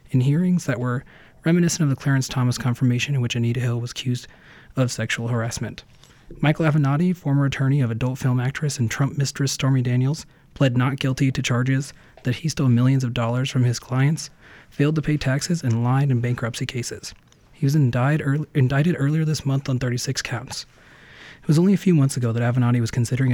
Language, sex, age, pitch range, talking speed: English, male, 30-49, 125-145 Hz, 195 wpm